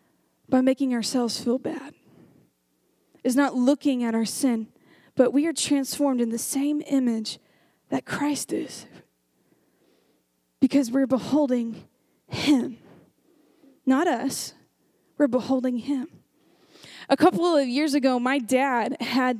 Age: 10-29